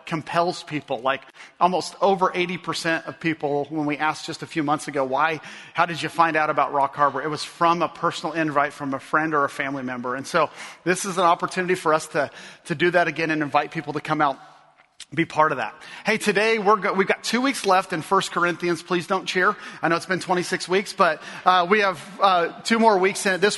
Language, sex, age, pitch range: English, male, 40-59, 160-195 Hz